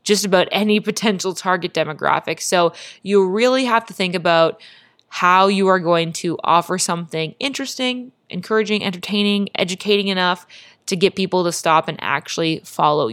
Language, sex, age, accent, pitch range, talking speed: English, female, 20-39, American, 170-210 Hz, 150 wpm